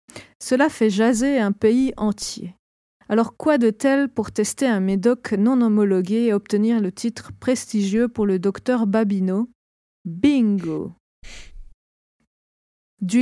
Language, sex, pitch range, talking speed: French, female, 200-245 Hz, 125 wpm